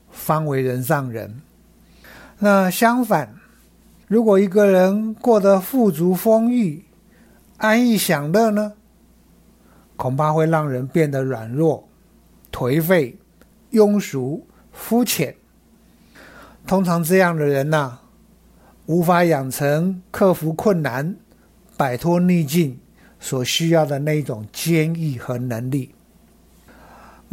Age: 60-79